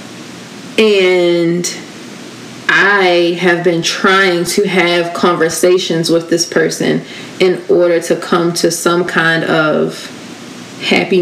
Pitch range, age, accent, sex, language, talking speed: 170-190 Hz, 20-39, American, female, English, 105 wpm